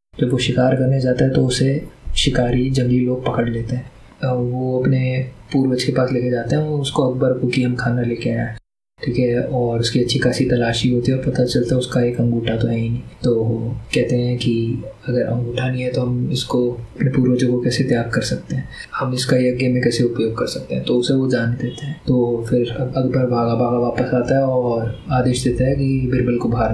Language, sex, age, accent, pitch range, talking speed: Hindi, male, 20-39, native, 120-130 Hz, 230 wpm